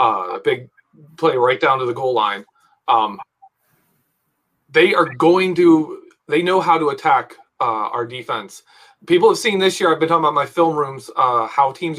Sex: male